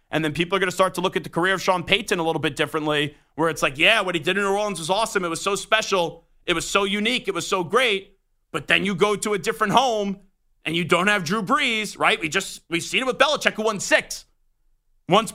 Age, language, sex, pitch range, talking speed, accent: 30-49, English, male, 150-210 Hz, 280 wpm, American